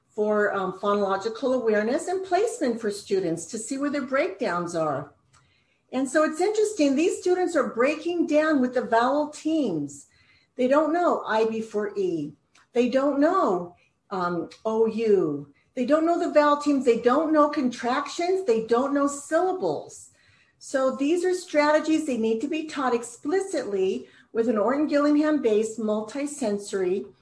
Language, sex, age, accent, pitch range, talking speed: English, female, 50-69, American, 215-305 Hz, 145 wpm